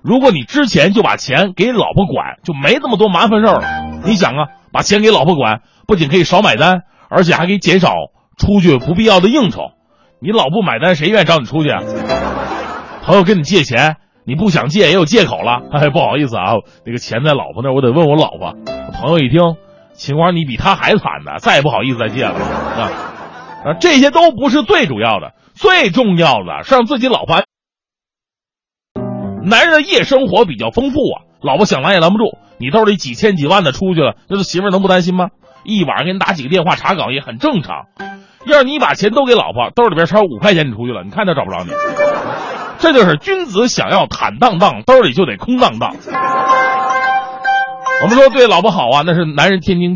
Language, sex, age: Chinese, male, 30-49